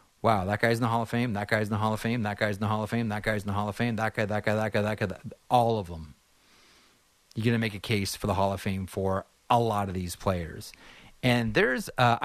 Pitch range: 100-125 Hz